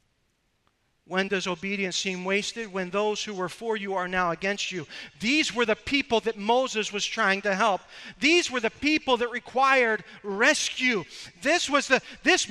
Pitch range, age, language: 175-230 Hz, 40-59, English